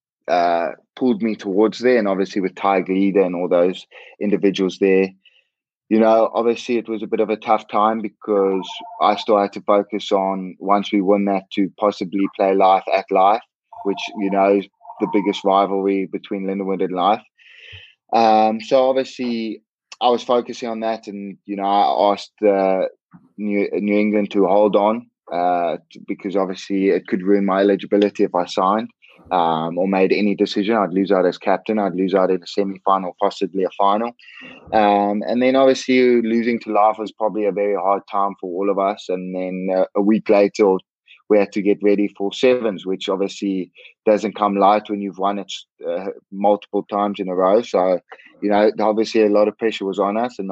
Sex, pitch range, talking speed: male, 95-110 Hz, 190 wpm